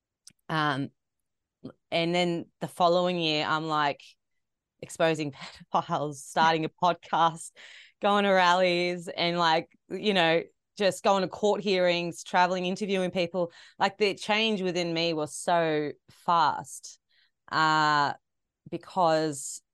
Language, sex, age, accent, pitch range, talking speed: English, female, 20-39, Australian, 145-180 Hz, 115 wpm